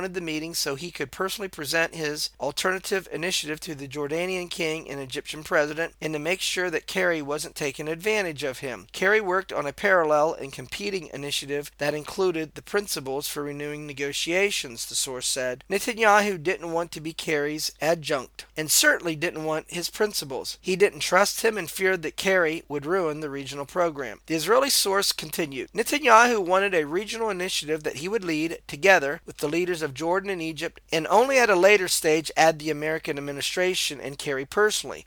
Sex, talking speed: male, 180 wpm